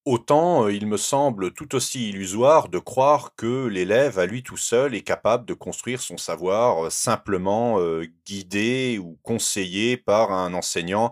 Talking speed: 165 wpm